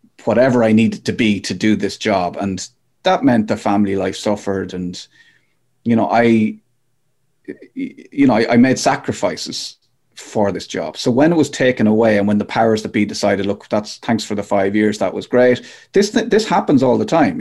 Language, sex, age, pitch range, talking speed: English, male, 30-49, 105-130 Hz, 205 wpm